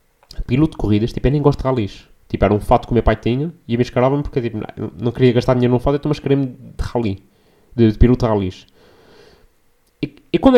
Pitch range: 115-145 Hz